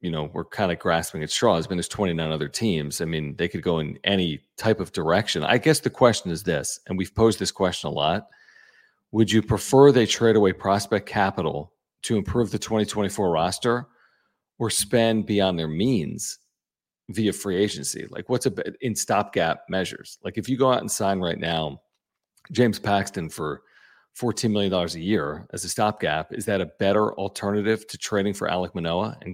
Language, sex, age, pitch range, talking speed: English, male, 40-59, 90-110 Hz, 190 wpm